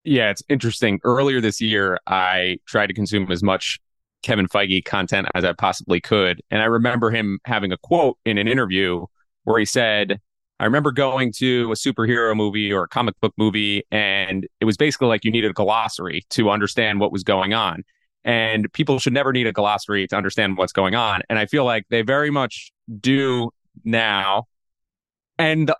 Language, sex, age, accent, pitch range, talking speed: English, male, 30-49, American, 105-135 Hz, 190 wpm